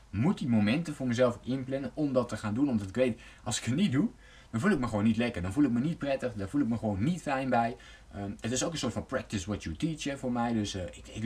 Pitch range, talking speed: 95-125 Hz, 305 wpm